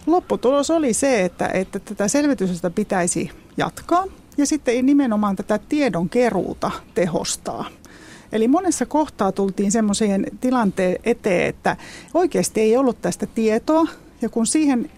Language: Finnish